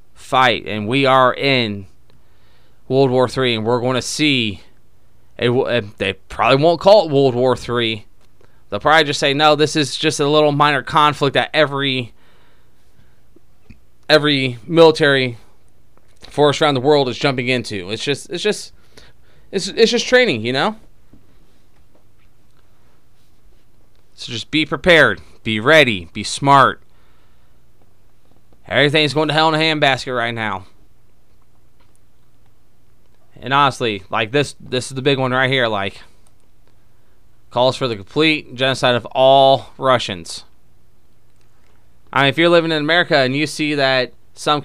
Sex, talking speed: male, 140 wpm